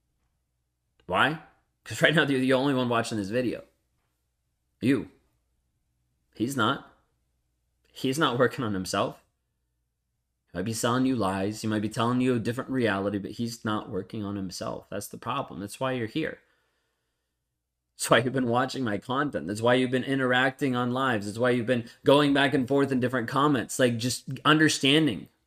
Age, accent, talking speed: 20-39, American, 175 wpm